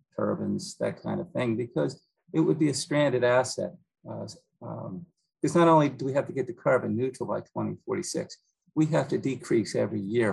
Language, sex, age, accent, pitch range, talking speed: English, male, 50-69, American, 115-175 Hz, 190 wpm